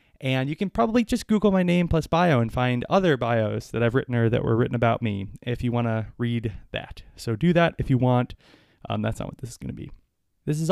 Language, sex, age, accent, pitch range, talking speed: English, male, 20-39, American, 115-145 Hz, 260 wpm